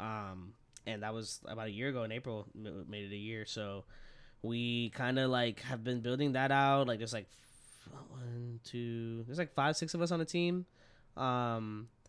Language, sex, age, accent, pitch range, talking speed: English, male, 10-29, American, 105-125 Hz, 205 wpm